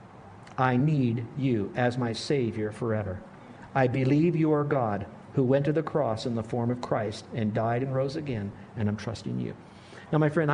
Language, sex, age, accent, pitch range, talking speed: English, male, 50-69, American, 115-160 Hz, 195 wpm